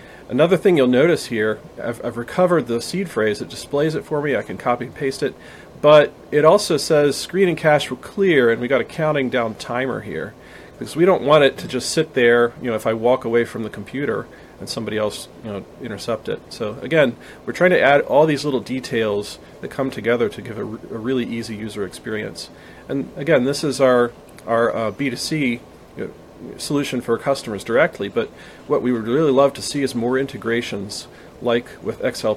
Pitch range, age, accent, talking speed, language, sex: 110-140 Hz, 40-59, American, 200 wpm, English, male